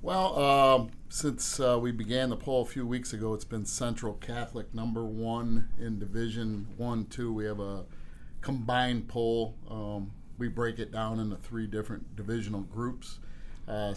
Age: 40-59